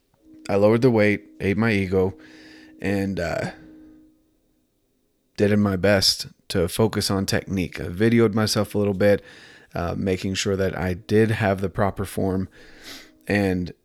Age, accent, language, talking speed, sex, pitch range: 30-49, American, English, 145 wpm, male, 95-110 Hz